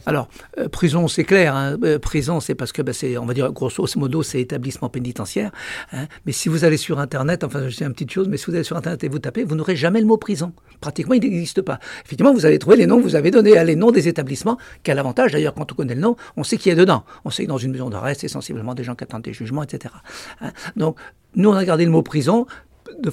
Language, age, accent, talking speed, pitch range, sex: French, 60-79, French, 280 wpm, 145-195 Hz, male